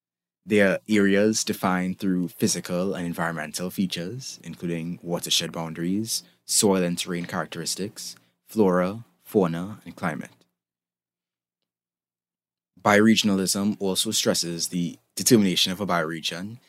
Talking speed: 100 wpm